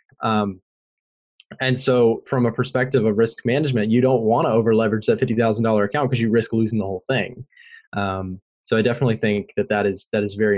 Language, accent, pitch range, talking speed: English, American, 110-135 Hz, 215 wpm